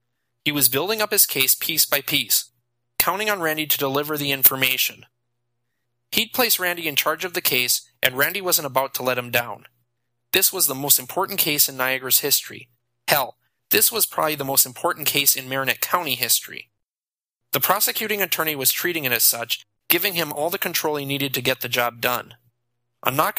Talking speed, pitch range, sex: 190 wpm, 120-160 Hz, male